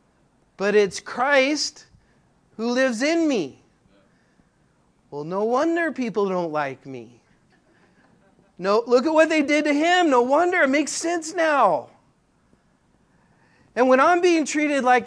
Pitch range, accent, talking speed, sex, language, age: 180-250 Hz, American, 135 wpm, male, English, 40-59